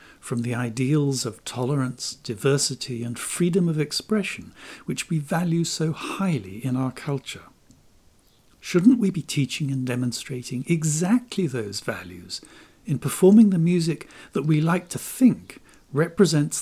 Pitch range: 135-195 Hz